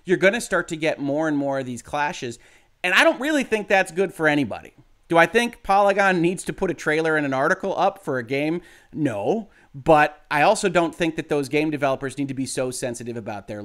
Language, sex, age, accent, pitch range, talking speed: English, male, 30-49, American, 130-190 Hz, 235 wpm